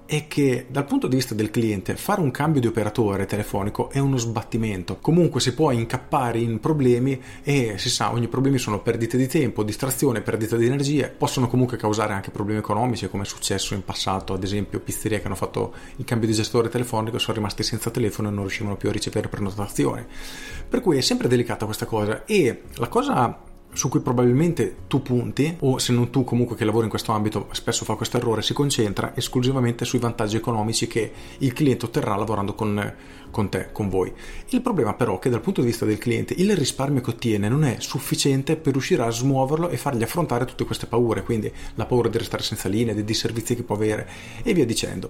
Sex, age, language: male, 30-49, Italian